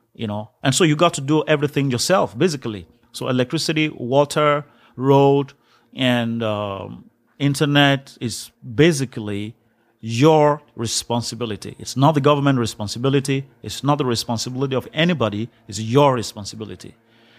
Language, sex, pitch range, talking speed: English, male, 115-145 Hz, 125 wpm